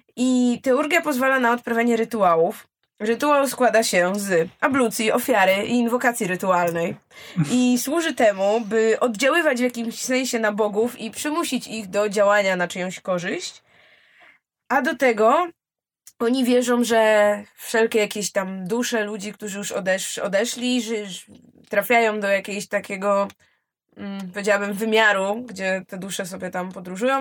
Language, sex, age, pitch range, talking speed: Polish, female, 20-39, 195-245 Hz, 130 wpm